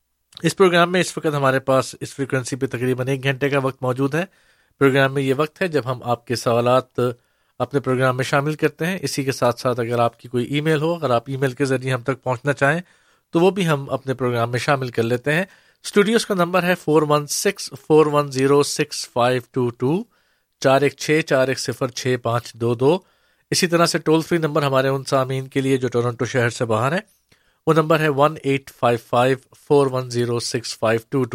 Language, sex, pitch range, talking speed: Urdu, male, 125-155 Hz, 180 wpm